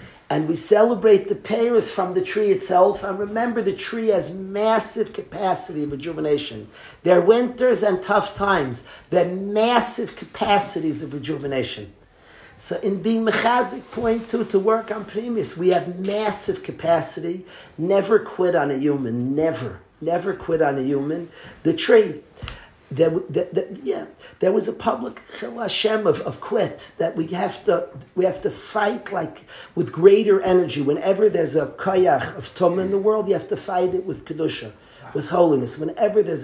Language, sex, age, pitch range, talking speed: English, male, 50-69, 150-210 Hz, 165 wpm